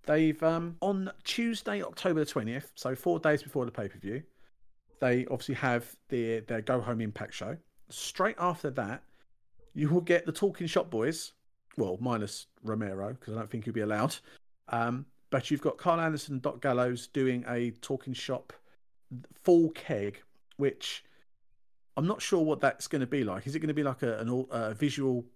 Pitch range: 115-150 Hz